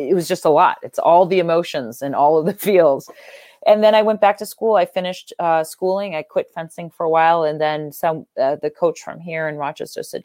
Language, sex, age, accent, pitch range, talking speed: English, female, 30-49, American, 150-180 Hz, 245 wpm